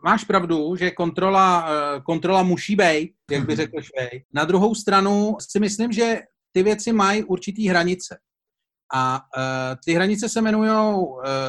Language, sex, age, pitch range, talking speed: Czech, male, 40-59, 150-200 Hz, 135 wpm